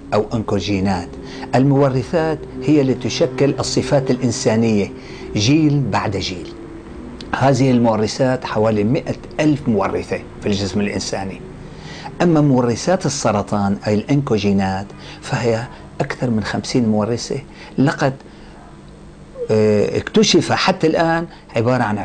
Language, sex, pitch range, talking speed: Arabic, male, 100-135 Hz, 100 wpm